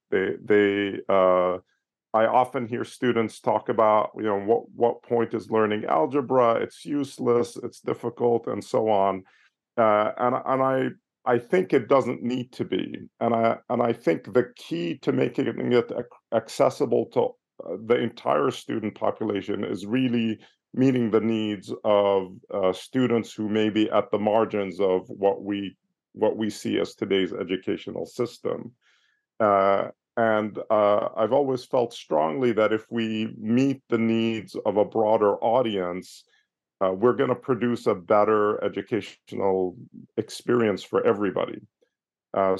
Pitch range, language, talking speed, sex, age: 105-120 Hz, English, 145 wpm, male, 40-59